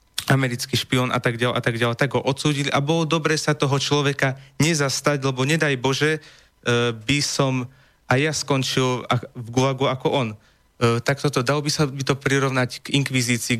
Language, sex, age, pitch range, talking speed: Slovak, male, 30-49, 120-140 Hz, 175 wpm